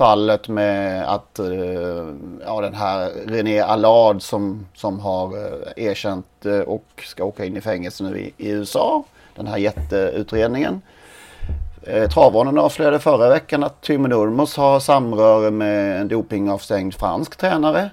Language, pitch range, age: Swedish, 105-140 Hz, 30-49